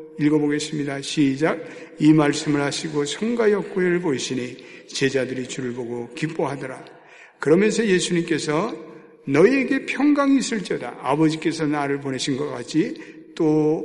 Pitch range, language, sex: 145-215 Hz, Korean, male